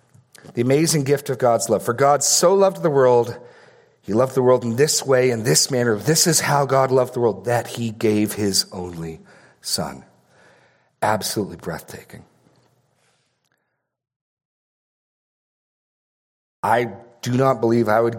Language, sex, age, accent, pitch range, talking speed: English, male, 40-59, American, 100-130 Hz, 140 wpm